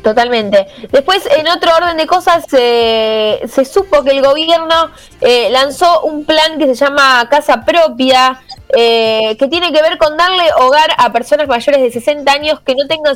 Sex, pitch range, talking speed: female, 225-290 Hz, 180 wpm